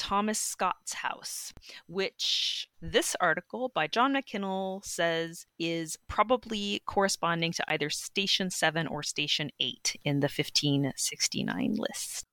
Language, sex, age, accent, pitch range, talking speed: English, female, 30-49, American, 160-210 Hz, 115 wpm